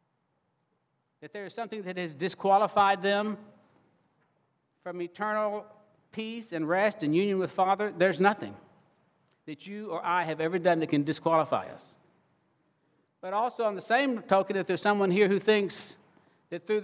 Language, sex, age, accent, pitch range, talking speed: English, male, 60-79, American, 155-205 Hz, 155 wpm